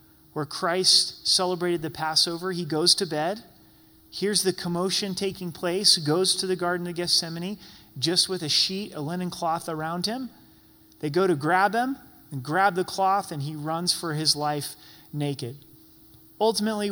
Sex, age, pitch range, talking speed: male, 30-49, 150-190 Hz, 165 wpm